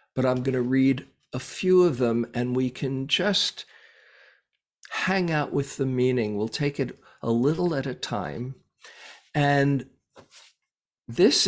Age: 50-69